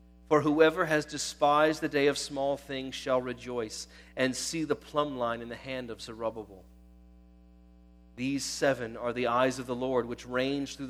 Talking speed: 175 wpm